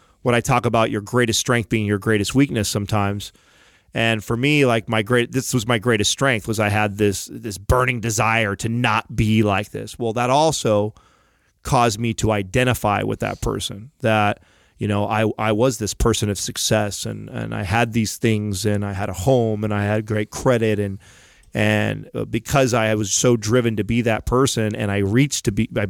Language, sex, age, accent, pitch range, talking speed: English, male, 30-49, American, 105-125 Hz, 205 wpm